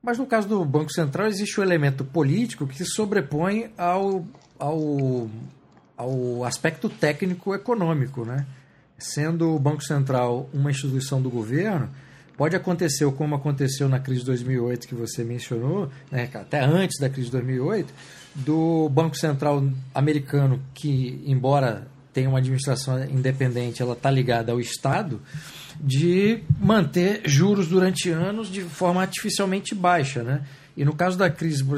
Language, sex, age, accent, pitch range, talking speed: Portuguese, male, 40-59, Brazilian, 130-175 Hz, 145 wpm